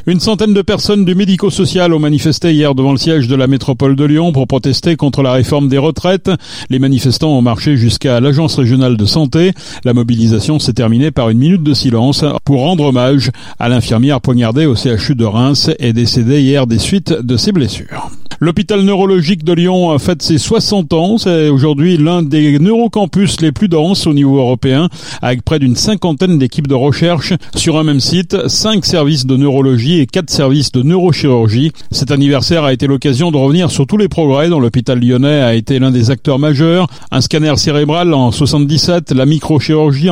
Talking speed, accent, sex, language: 190 wpm, French, male, French